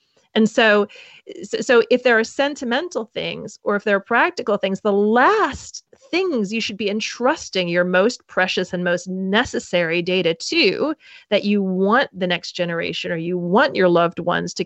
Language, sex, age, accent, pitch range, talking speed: English, female, 30-49, American, 180-255 Hz, 170 wpm